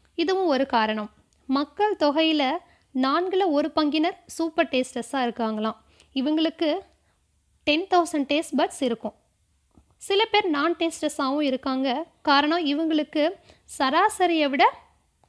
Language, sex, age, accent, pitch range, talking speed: Tamil, female, 20-39, native, 255-335 Hz, 100 wpm